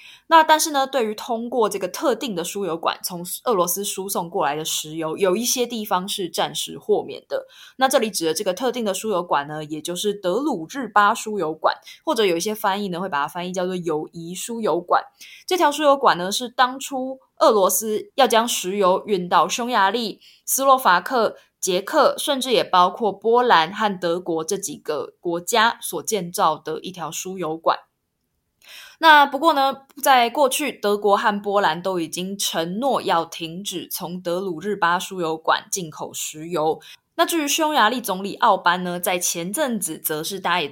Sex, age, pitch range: female, 20-39, 170-240 Hz